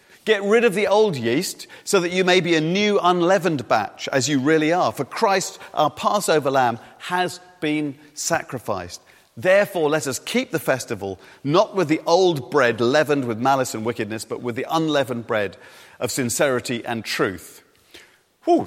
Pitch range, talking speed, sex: 130-180 Hz, 170 wpm, male